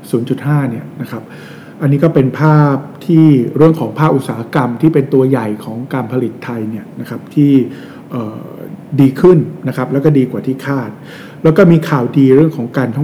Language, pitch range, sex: Thai, 120-145 Hz, male